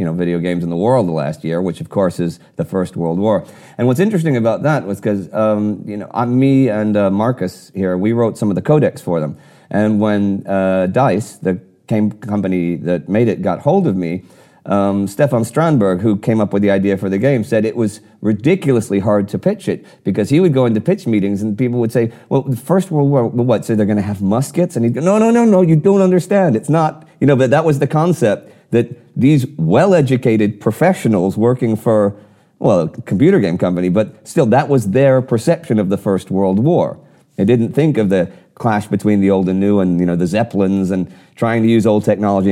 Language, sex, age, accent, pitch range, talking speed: English, male, 40-59, American, 100-130 Hz, 225 wpm